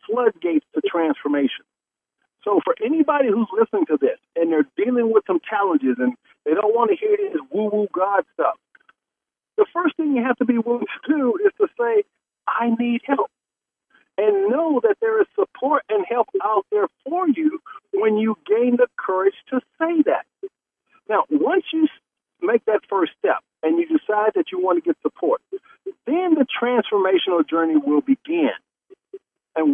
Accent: American